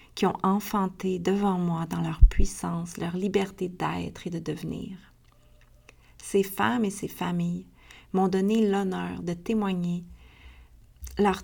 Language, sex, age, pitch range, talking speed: French, female, 40-59, 160-200 Hz, 130 wpm